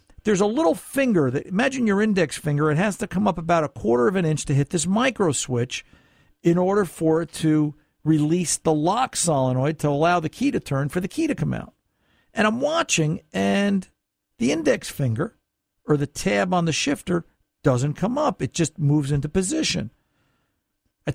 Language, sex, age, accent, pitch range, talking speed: English, male, 50-69, American, 140-195 Hz, 195 wpm